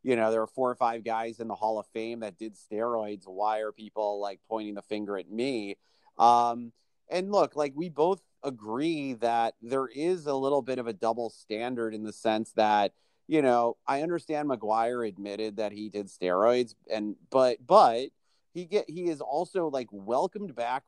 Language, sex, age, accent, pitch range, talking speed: English, male, 30-49, American, 110-140 Hz, 195 wpm